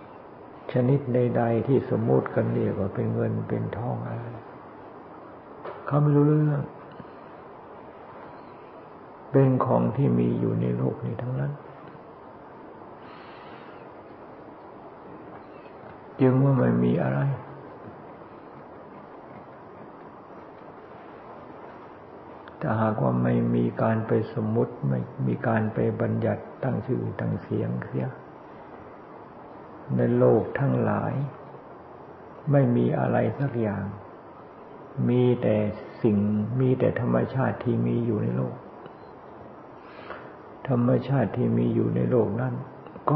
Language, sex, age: Thai, male, 50-69